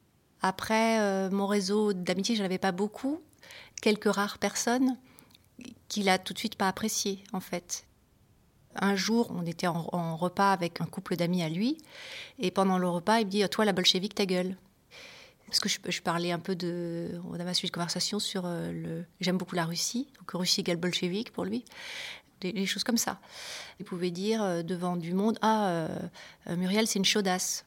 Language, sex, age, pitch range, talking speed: French, female, 30-49, 180-225 Hz, 200 wpm